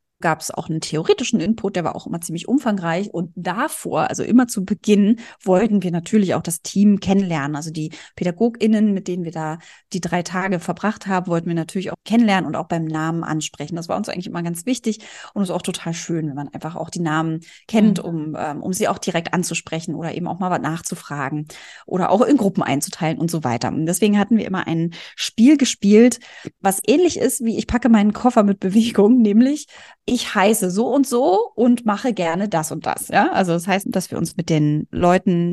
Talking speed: 215 wpm